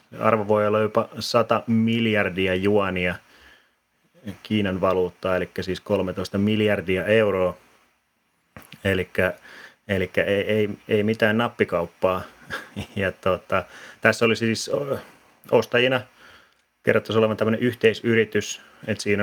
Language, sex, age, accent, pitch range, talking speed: Finnish, male, 30-49, native, 95-110 Hz, 105 wpm